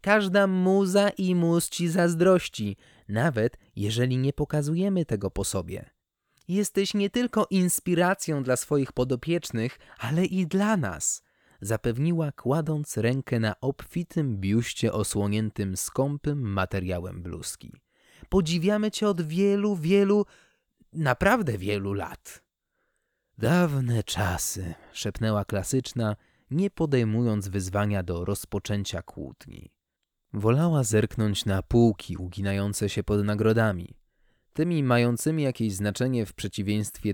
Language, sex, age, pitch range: Polish, male, 20-39, 105-165 Hz